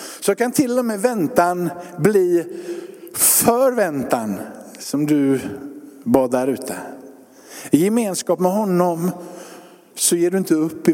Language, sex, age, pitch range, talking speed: Swedish, male, 50-69, 160-255 Hz, 125 wpm